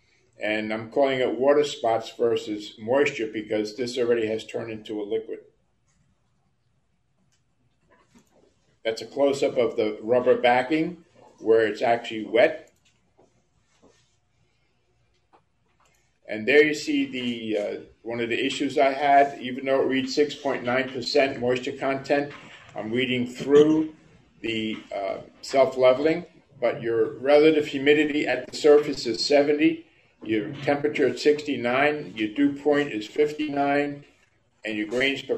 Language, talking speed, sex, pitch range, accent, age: English, 125 wpm, male, 115-145 Hz, American, 50-69